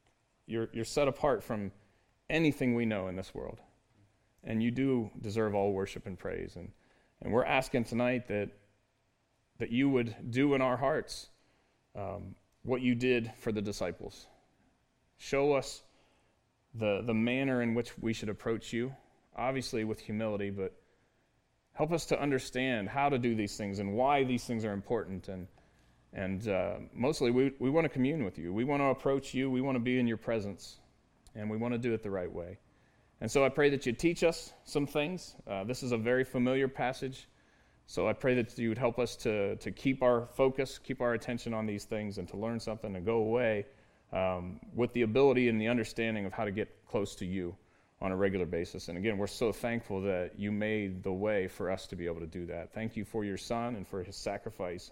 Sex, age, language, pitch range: male, 30-49, English, 100-125 Hz